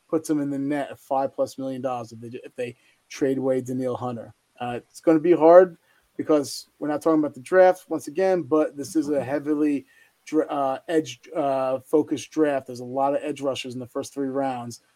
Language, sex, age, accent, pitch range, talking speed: English, male, 30-49, American, 130-155 Hz, 215 wpm